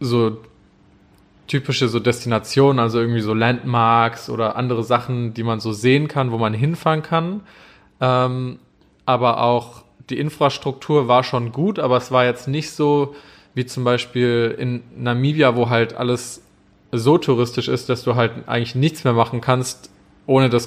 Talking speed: 155 wpm